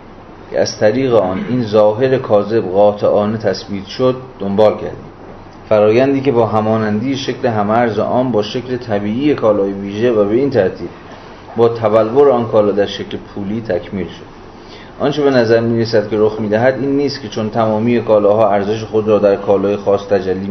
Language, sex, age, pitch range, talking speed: Persian, male, 30-49, 100-120 Hz, 170 wpm